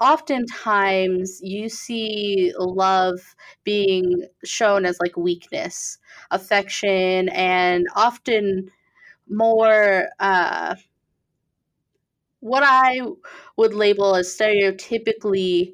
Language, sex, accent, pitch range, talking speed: English, female, American, 185-225 Hz, 75 wpm